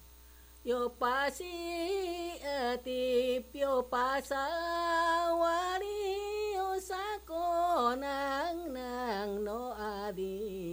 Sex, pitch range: female, 170-275 Hz